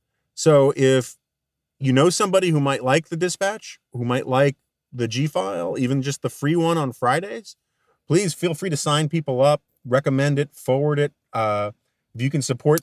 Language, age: English, 40-59